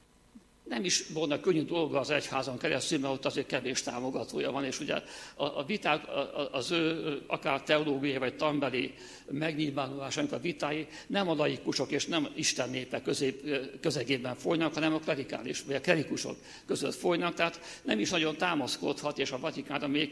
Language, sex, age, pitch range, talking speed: Hungarian, male, 60-79, 135-165 Hz, 155 wpm